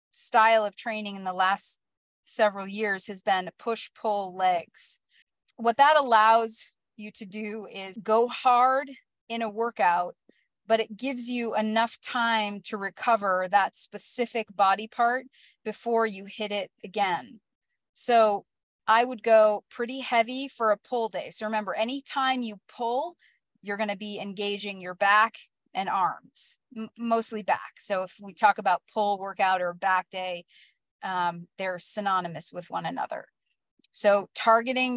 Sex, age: female, 30-49